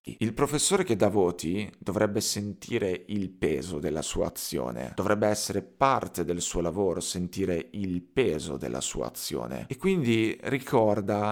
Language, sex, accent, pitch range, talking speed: Italian, male, native, 90-110 Hz, 145 wpm